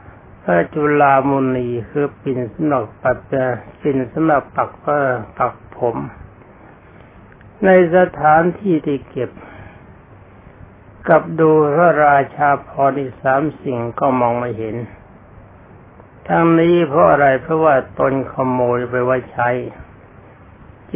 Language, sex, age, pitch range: Thai, male, 60-79, 110-150 Hz